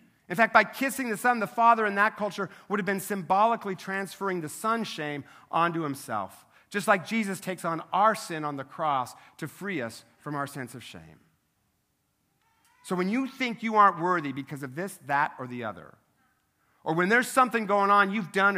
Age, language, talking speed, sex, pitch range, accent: 50-69, English, 195 wpm, male, 150-215 Hz, American